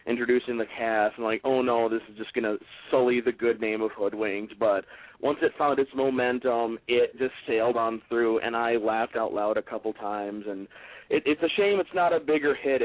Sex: male